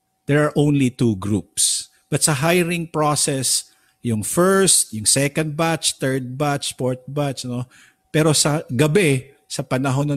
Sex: male